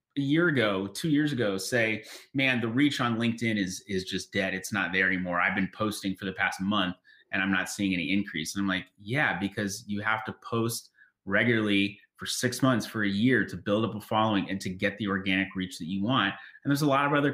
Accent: American